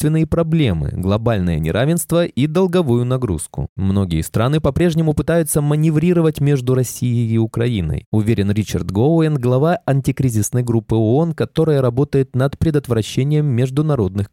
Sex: male